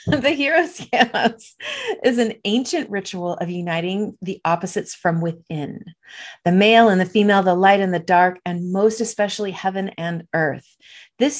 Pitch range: 165-210 Hz